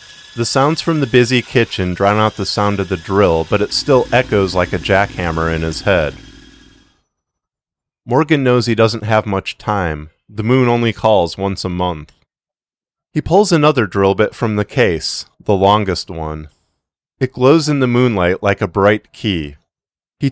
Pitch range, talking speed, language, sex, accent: 95-125 Hz, 170 wpm, English, male, American